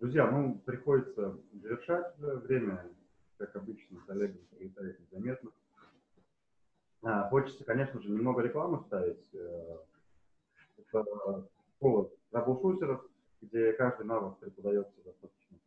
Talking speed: 105 wpm